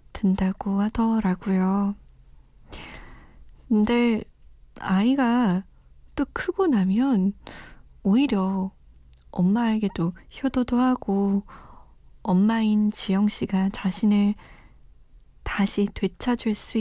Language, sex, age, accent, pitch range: Korean, female, 20-39, native, 195-235 Hz